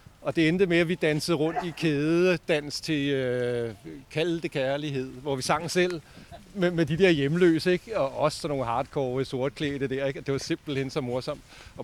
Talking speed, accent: 190 wpm, native